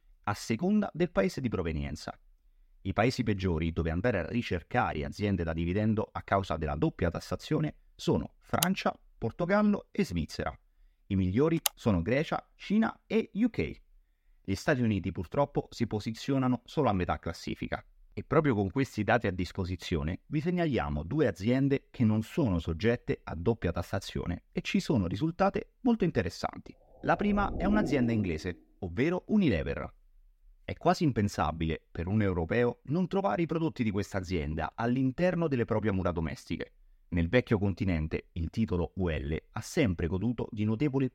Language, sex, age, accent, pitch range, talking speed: Italian, male, 30-49, native, 90-140 Hz, 150 wpm